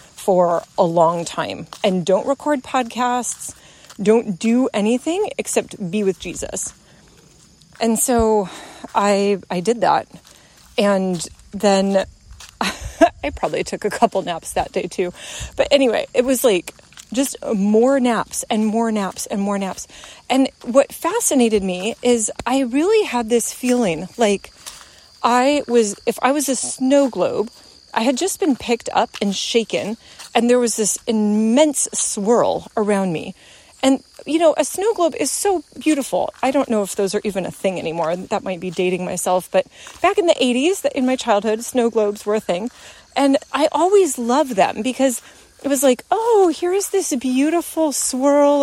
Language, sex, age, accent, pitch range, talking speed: English, female, 30-49, American, 205-275 Hz, 165 wpm